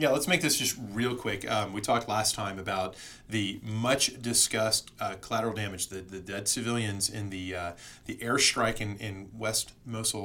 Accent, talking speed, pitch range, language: American, 180 wpm, 105-140 Hz, English